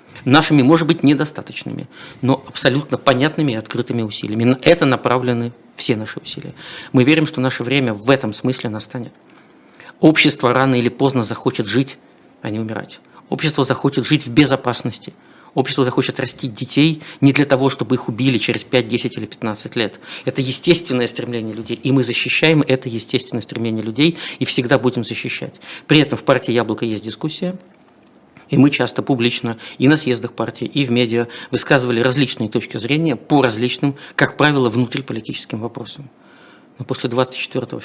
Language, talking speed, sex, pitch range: Russian, 160 wpm, male, 120-145 Hz